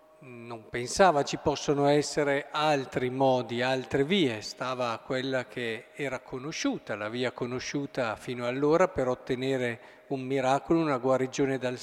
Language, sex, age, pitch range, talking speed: Italian, male, 50-69, 125-160 Hz, 130 wpm